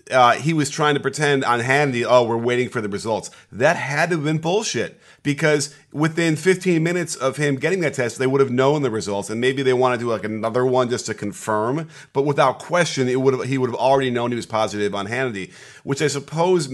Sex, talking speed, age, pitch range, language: male, 235 wpm, 30-49, 110-135 Hz, English